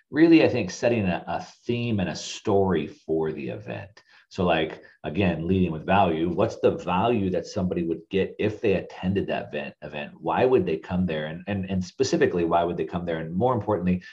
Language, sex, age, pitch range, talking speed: English, male, 30-49, 85-115 Hz, 205 wpm